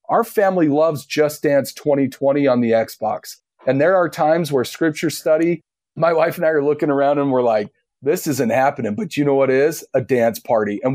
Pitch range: 130-170 Hz